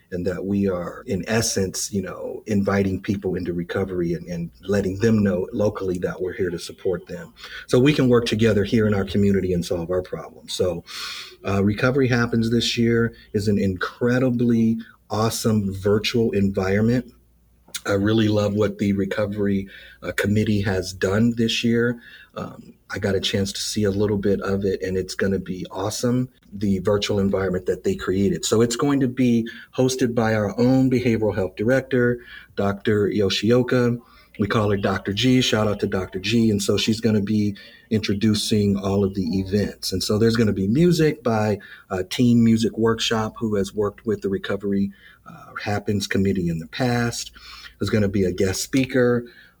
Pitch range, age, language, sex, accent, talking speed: 100-115 Hz, 40-59, English, male, American, 185 wpm